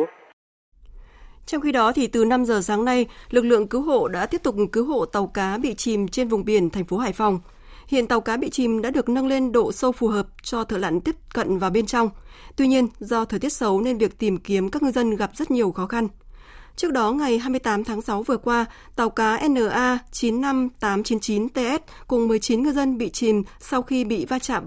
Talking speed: 220 wpm